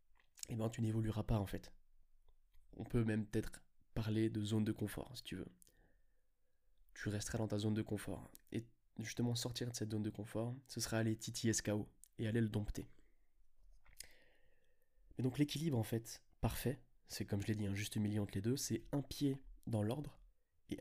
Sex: male